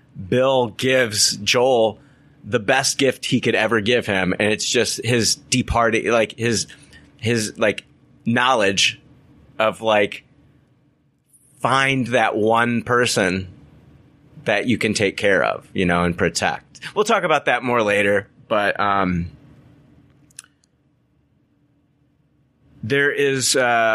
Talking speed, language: 120 wpm, English